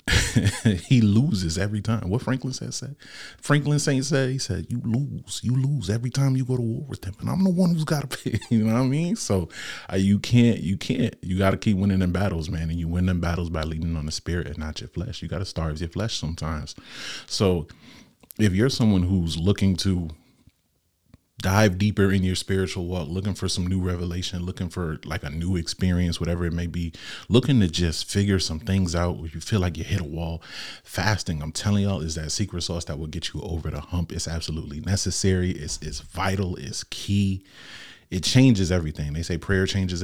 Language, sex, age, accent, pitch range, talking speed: English, male, 30-49, American, 85-110 Hz, 220 wpm